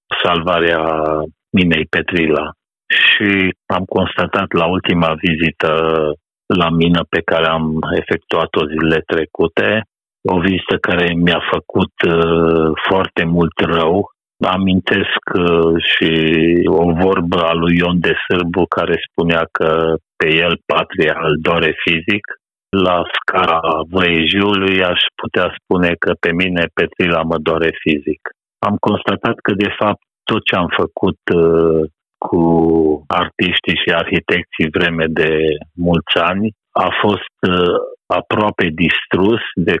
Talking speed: 120 wpm